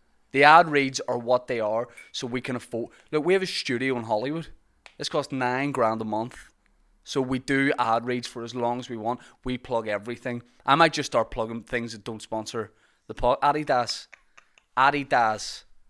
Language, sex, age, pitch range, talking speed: English, male, 20-39, 110-130 Hz, 195 wpm